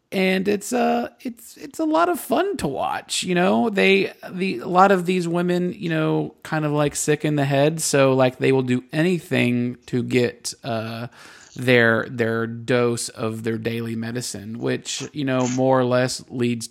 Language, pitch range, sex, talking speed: English, 120-180 Hz, male, 185 wpm